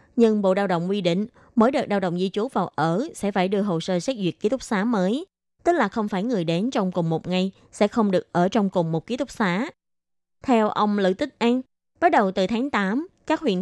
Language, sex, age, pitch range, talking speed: Vietnamese, female, 20-39, 175-235 Hz, 250 wpm